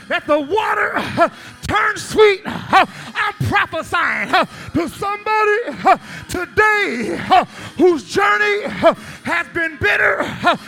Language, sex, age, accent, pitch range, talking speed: English, male, 30-49, American, 335-415 Hz, 125 wpm